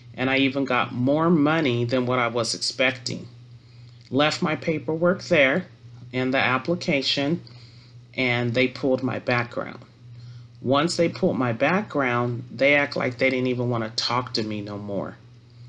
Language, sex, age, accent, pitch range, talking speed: English, male, 40-59, American, 120-140 Hz, 155 wpm